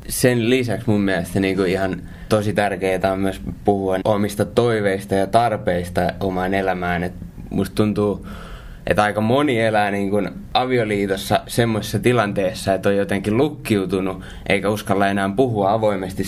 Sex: male